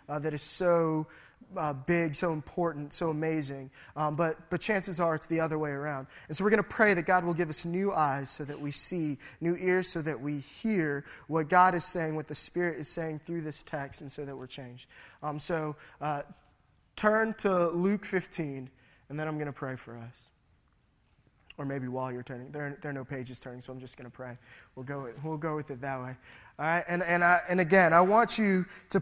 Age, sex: 20-39, male